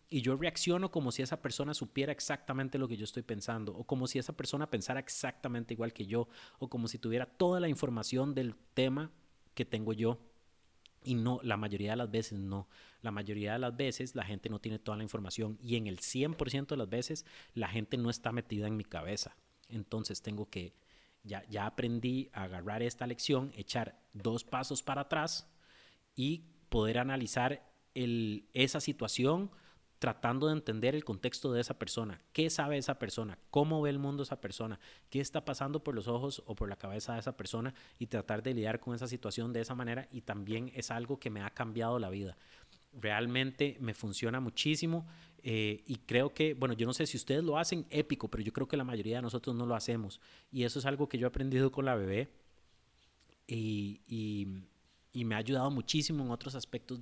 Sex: male